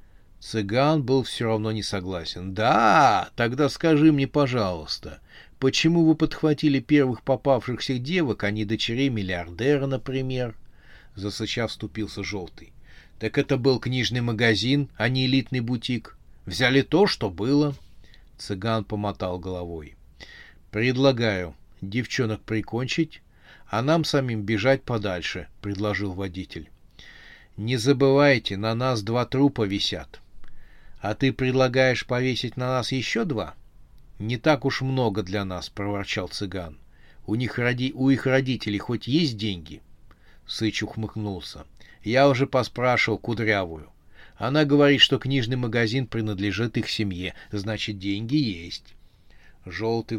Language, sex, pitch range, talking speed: Russian, male, 100-130 Hz, 120 wpm